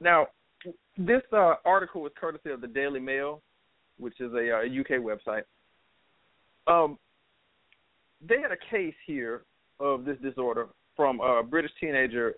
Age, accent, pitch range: 40-59, American, 135-190 Hz